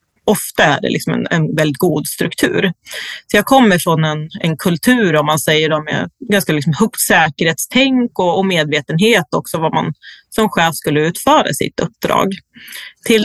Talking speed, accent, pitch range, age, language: 170 wpm, native, 160-205 Hz, 30-49, Swedish